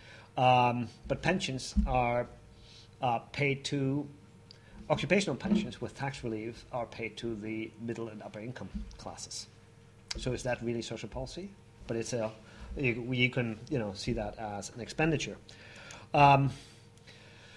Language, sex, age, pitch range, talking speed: English, male, 40-59, 115-140 Hz, 135 wpm